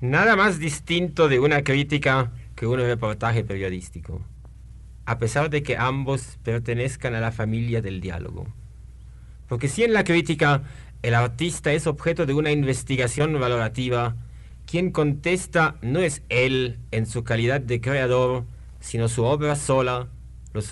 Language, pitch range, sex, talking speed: Spanish, 110-140 Hz, male, 140 wpm